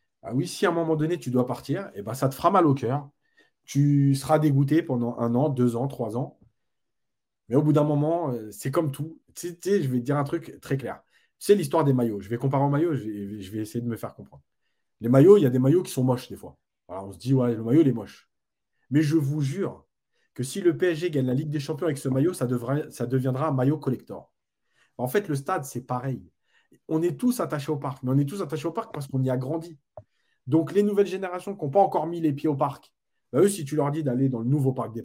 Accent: French